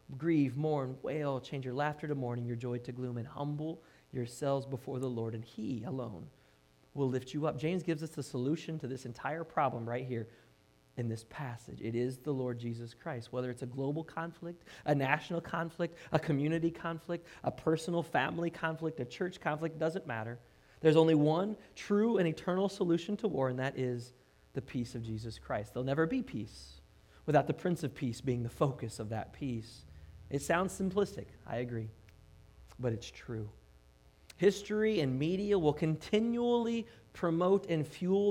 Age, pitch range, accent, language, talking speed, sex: 30-49, 115-165 Hz, American, English, 175 wpm, male